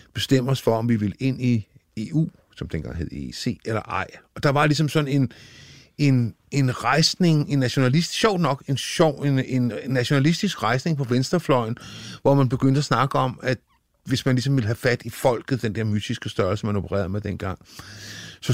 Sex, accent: male, native